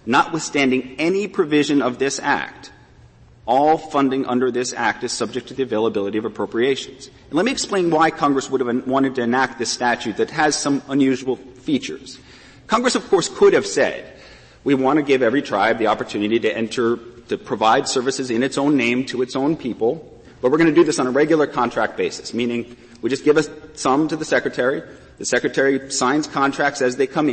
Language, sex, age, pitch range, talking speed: English, male, 40-59, 125-185 Hz, 195 wpm